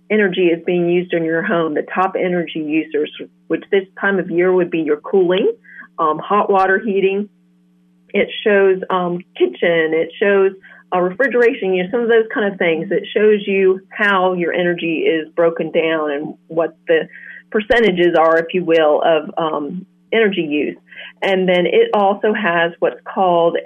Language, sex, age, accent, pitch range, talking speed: English, female, 40-59, American, 170-215 Hz, 175 wpm